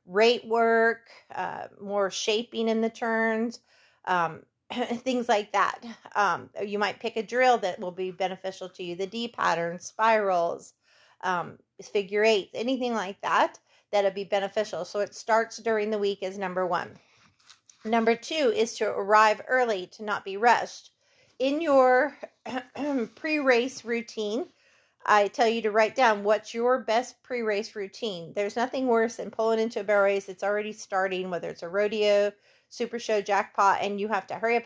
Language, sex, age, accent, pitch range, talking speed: English, female, 40-59, American, 200-230 Hz, 170 wpm